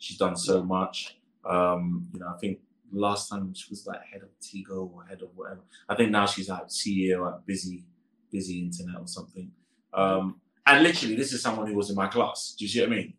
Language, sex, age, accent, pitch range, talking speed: English, male, 20-39, British, 100-120 Hz, 230 wpm